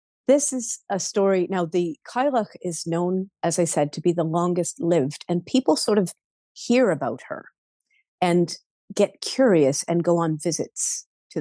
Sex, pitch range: female, 170-220 Hz